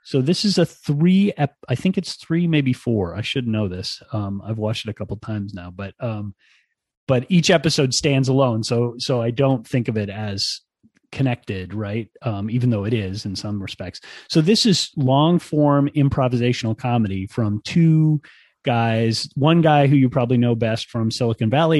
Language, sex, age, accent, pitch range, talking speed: English, male, 30-49, American, 110-140 Hz, 195 wpm